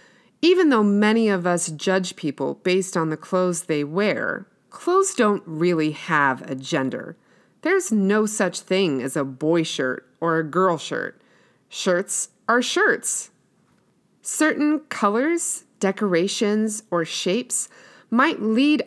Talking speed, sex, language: 130 wpm, female, English